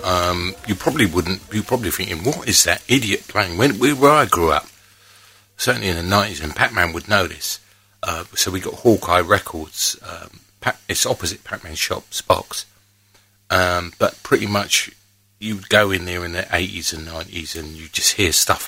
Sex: male